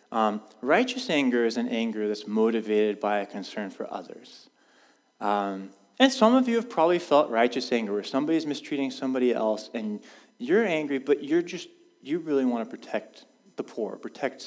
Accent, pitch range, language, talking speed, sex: American, 115-180 Hz, English, 175 wpm, male